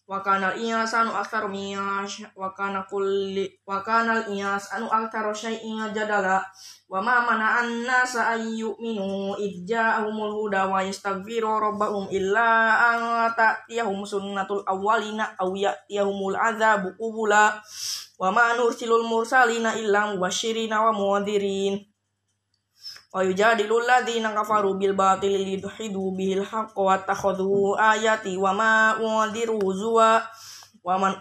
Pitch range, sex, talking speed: 195-220 Hz, female, 115 wpm